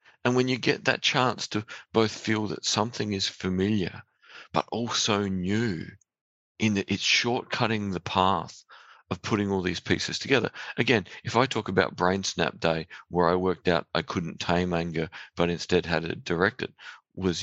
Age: 50-69